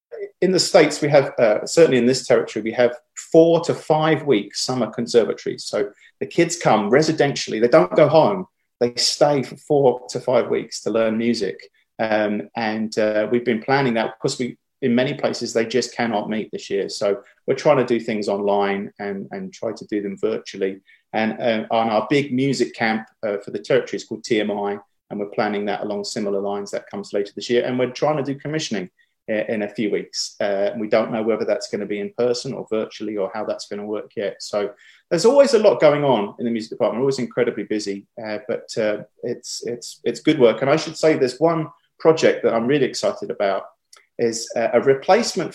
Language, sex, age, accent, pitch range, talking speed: English, male, 30-49, British, 110-155 Hz, 215 wpm